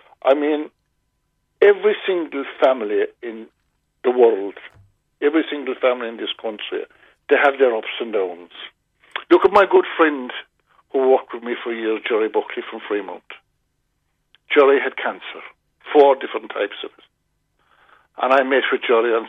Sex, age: male, 50-69